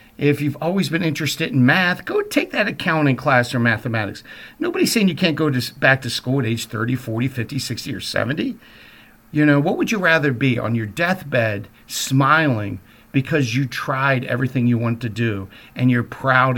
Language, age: English, 50-69